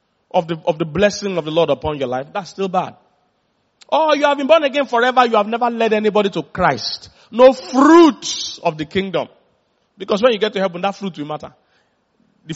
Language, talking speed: English, 210 wpm